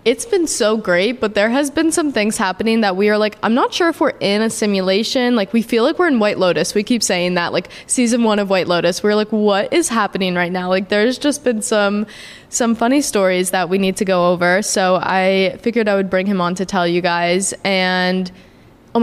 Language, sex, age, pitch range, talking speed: English, female, 20-39, 190-230 Hz, 240 wpm